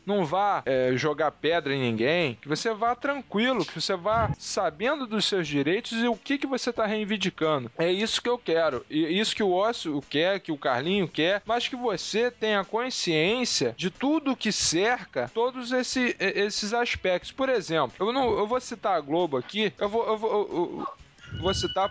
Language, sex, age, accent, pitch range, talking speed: English, male, 10-29, Brazilian, 150-220 Hz, 180 wpm